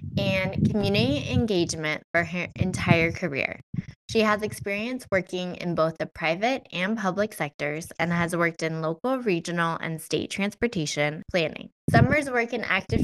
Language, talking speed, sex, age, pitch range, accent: English, 145 wpm, female, 10-29, 160-205 Hz, American